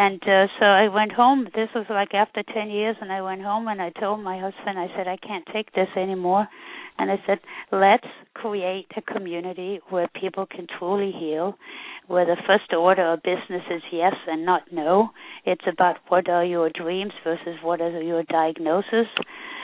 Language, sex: English, female